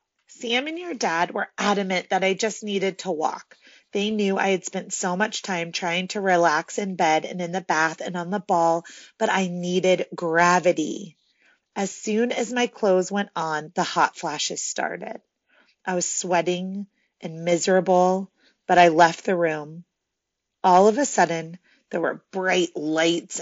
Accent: American